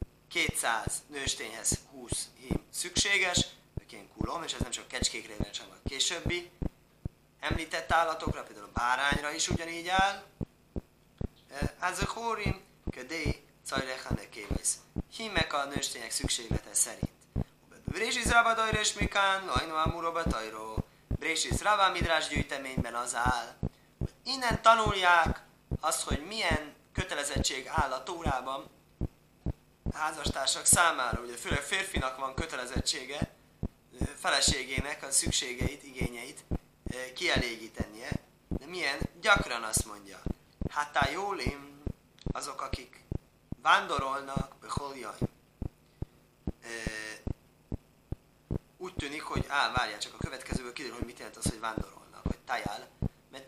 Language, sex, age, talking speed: Hungarian, male, 30-49, 110 wpm